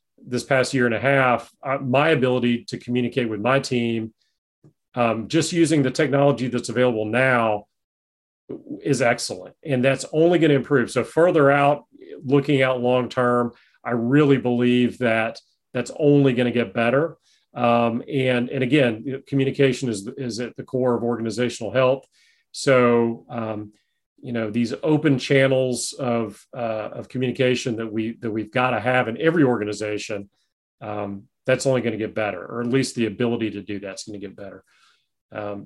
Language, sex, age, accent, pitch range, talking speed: English, male, 40-59, American, 115-135 Hz, 165 wpm